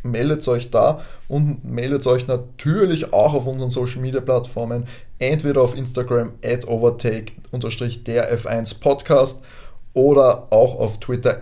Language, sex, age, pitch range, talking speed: German, male, 20-39, 120-135 Hz, 115 wpm